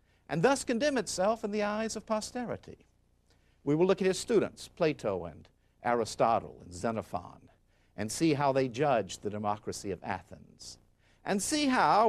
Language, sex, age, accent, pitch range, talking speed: Italian, male, 50-69, American, 100-150 Hz, 160 wpm